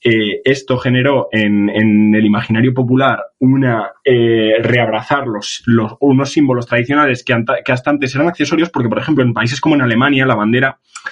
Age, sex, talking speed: 20-39, male, 180 wpm